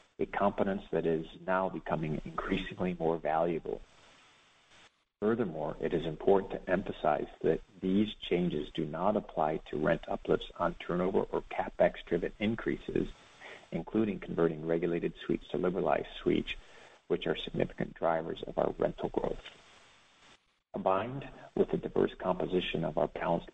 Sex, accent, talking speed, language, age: male, American, 135 wpm, English, 50-69